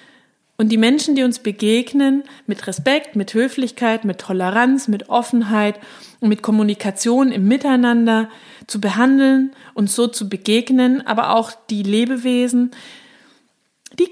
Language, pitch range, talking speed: German, 205-255 Hz, 130 wpm